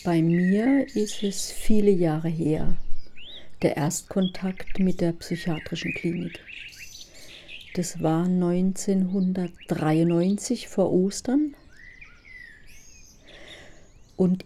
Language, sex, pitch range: German, female, 170-200 Hz